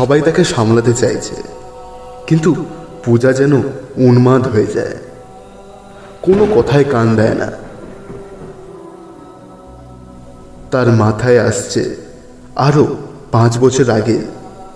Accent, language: native, Bengali